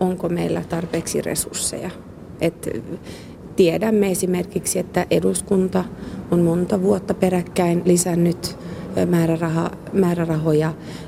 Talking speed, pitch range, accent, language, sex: 75 wpm, 170-190 Hz, native, Finnish, female